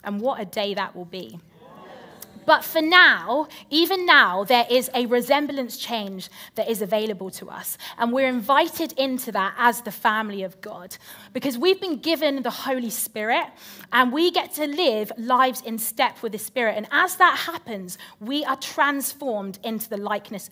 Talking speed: 175 wpm